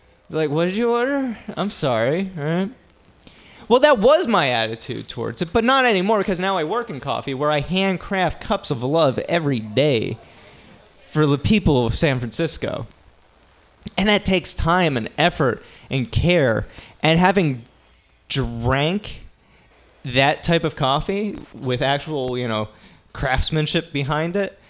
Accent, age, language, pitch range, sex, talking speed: American, 20-39, English, 125-185 Hz, male, 145 wpm